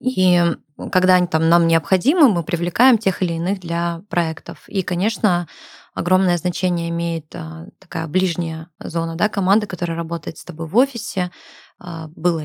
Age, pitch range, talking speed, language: 20-39, 170-195 Hz, 145 wpm, Russian